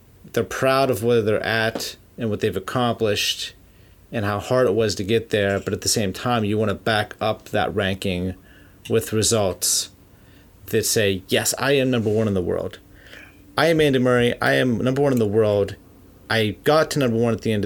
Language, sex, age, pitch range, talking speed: English, male, 30-49, 100-120 Hz, 205 wpm